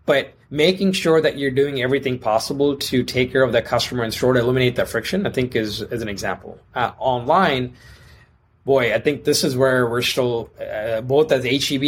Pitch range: 120-140 Hz